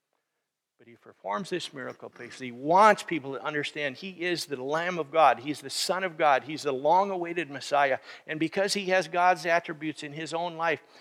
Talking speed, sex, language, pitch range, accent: 195 wpm, male, English, 160-205 Hz, American